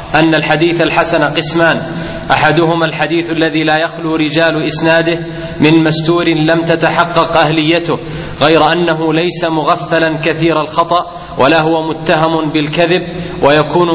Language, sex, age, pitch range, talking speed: Arabic, male, 30-49, 160-170 Hz, 115 wpm